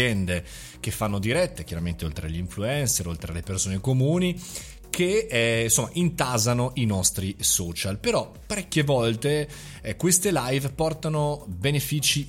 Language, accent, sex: Italian, native, male